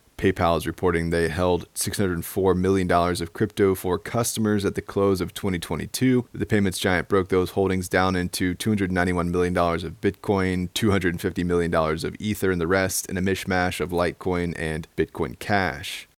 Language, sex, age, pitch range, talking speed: English, male, 20-39, 85-100 Hz, 160 wpm